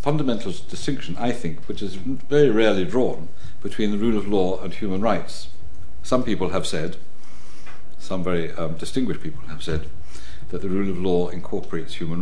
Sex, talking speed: male, 175 wpm